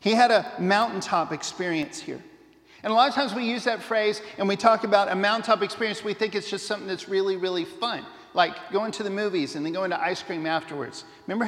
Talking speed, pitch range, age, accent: 230 wpm, 180-230 Hz, 50-69, American